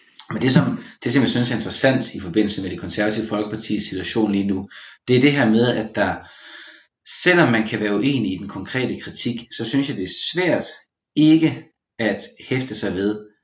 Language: Danish